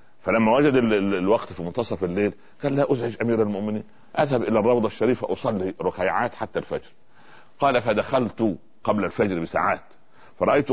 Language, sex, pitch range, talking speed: Arabic, male, 95-120 Hz, 140 wpm